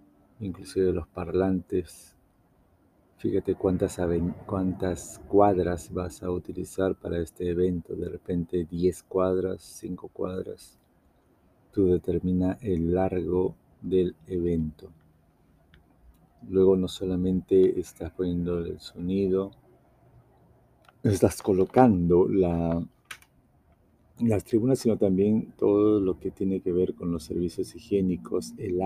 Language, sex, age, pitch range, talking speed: Spanish, male, 50-69, 85-95 Hz, 100 wpm